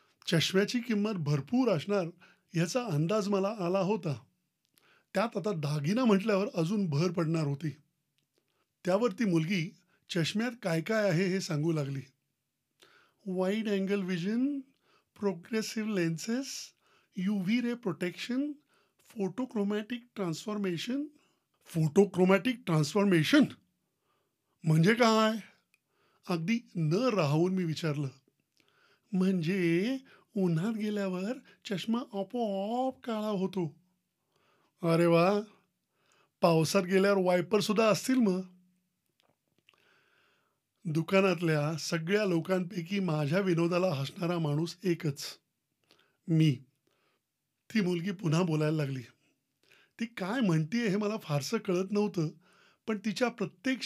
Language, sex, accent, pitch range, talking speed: Marathi, male, native, 170-220 Hz, 80 wpm